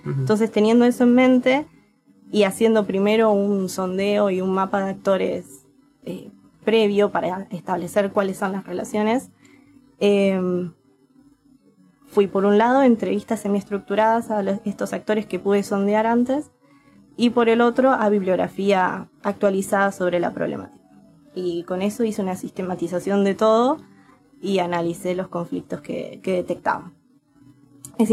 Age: 20-39